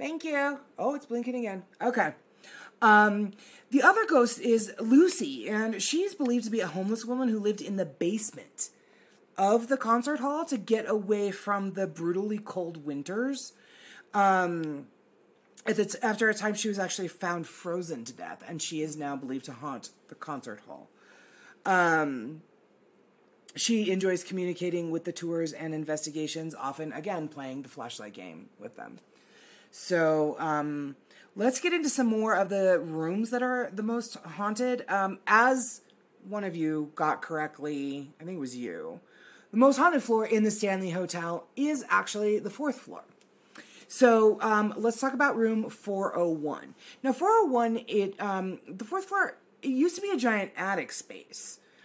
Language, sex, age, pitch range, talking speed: English, female, 30-49, 170-235 Hz, 160 wpm